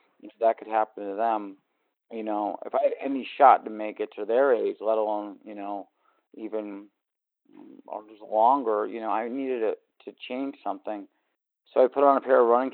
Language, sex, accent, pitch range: English, male, American, 110-125 Hz